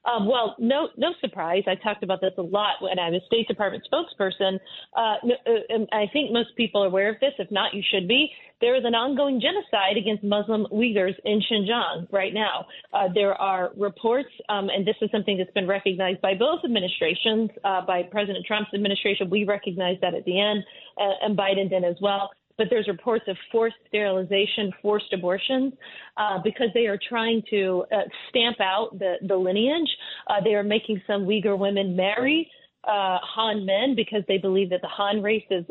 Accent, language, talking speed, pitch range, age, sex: American, English, 195 wpm, 195-230 Hz, 40-59, female